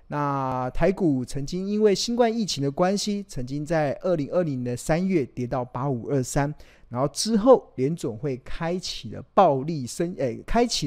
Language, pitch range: Chinese, 130-175 Hz